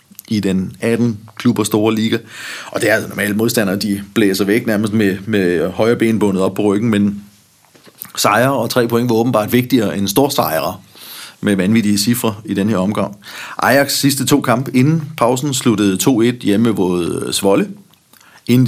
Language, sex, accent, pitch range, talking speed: Danish, male, native, 100-125 Hz, 170 wpm